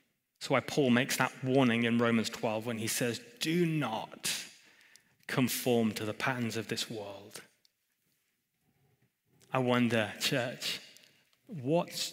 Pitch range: 120-155 Hz